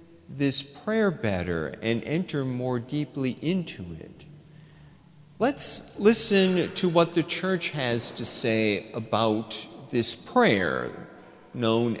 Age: 50-69